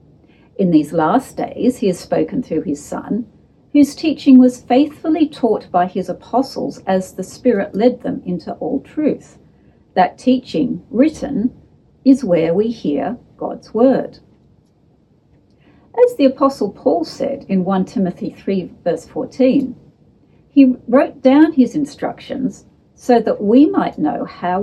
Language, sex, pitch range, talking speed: English, female, 200-270 Hz, 140 wpm